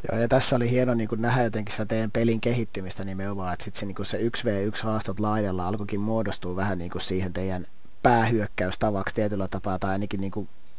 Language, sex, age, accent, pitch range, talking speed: Finnish, male, 30-49, native, 105-125 Hz, 185 wpm